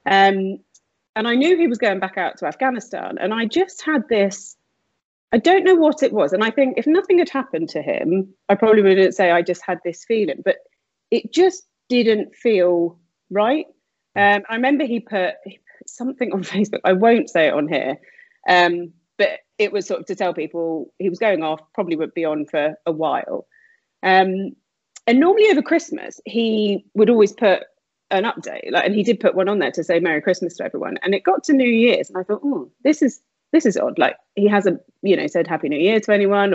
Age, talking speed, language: 30-49, 215 wpm, English